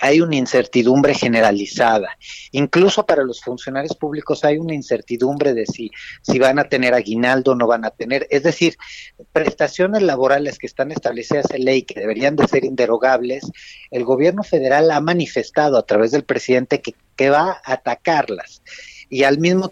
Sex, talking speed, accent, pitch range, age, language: male, 170 wpm, Mexican, 125-150 Hz, 40-59, Spanish